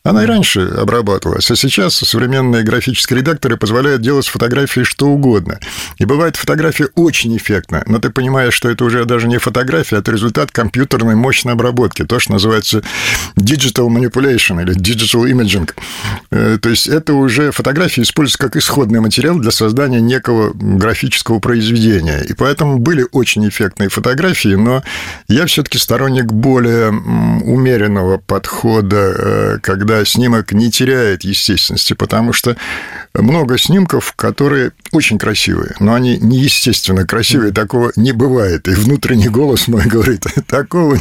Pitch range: 105-130 Hz